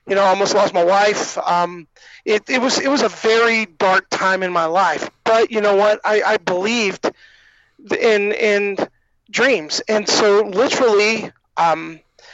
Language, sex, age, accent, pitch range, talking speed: English, male, 30-49, American, 190-220 Hz, 165 wpm